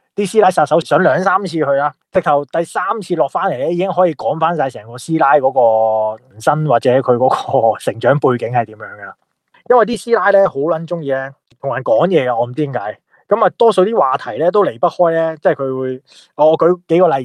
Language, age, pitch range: Chinese, 20-39, 140-185 Hz